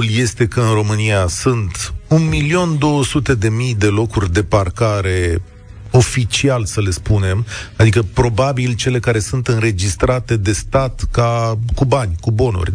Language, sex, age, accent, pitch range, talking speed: Romanian, male, 40-59, native, 95-135 Hz, 125 wpm